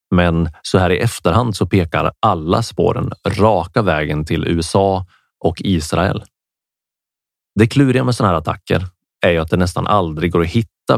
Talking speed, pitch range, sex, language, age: 165 wpm, 85-115 Hz, male, Swedish, 30-49